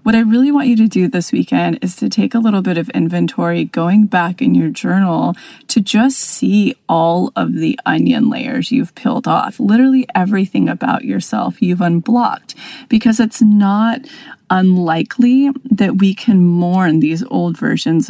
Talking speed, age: 165 wpm, 30-49